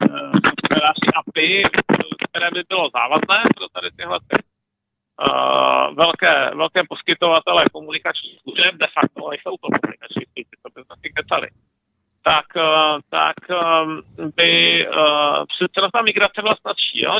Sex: male